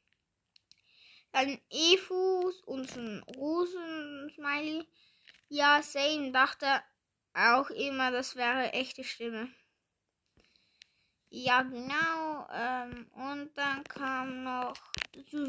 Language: German